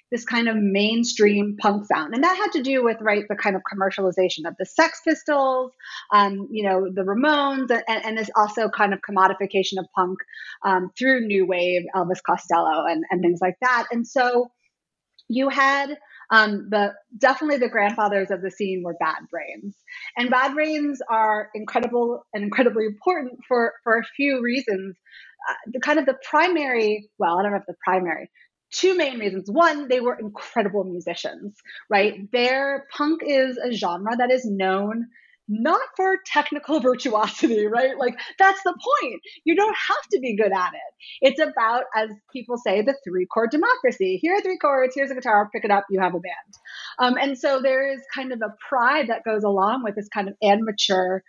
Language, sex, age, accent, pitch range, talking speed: English, female, 30-49, American, 205-270 Hz, 185 wpm